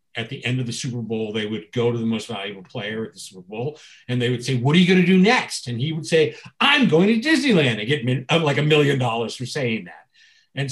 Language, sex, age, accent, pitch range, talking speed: English, male, 50-69, American, 125-160 Hz, 270 wpm